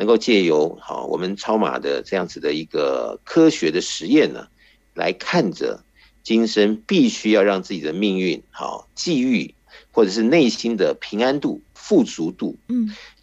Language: Chinese